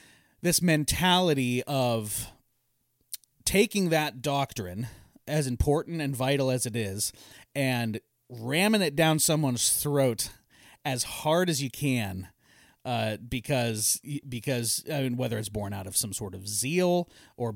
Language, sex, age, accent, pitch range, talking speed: English, male, 30-49, American, 115-150 Hz, 135 wpm